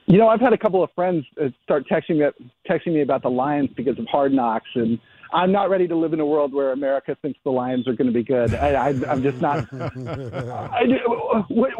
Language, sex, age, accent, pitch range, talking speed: English, male, 40-59, American, 140-190 Hz, 215 wpm